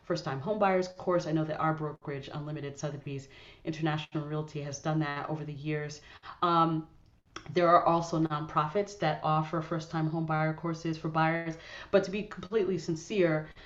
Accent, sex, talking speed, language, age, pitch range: American, female, 170 wpm, English, 30-49, 150-175 Hz